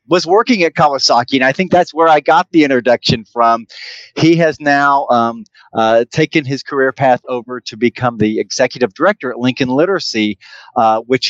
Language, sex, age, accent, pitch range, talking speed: English, male, 40-59, American, 115-140 Hz, 180 wpm